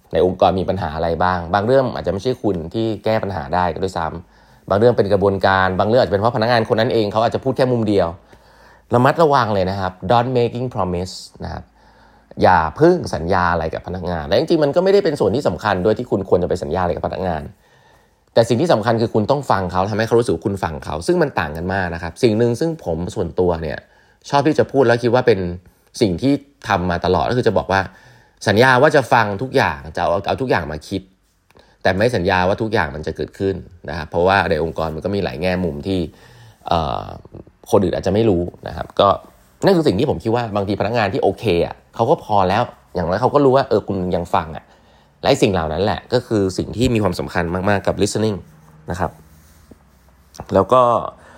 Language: English